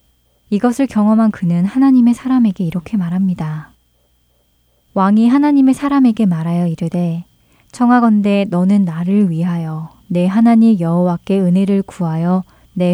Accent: native